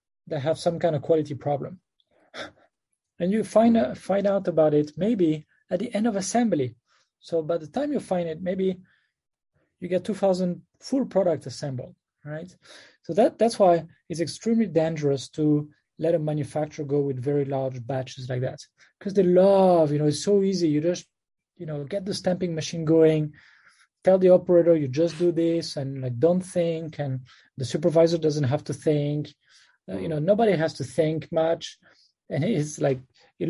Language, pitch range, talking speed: English, 140-175 Hz, 175 wpm